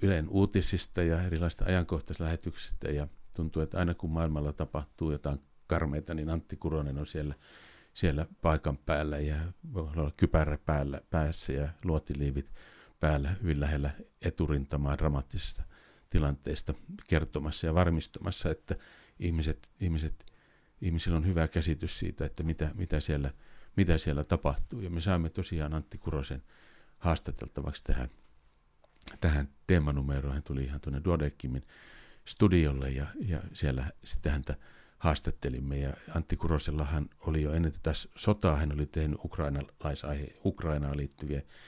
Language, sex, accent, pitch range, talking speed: Finnish, male, native, 70-85 Hz, 125 wpm